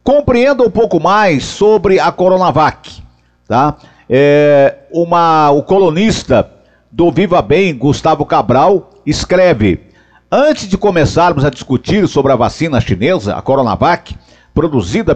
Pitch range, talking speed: 140-205 Hz, 120 wpm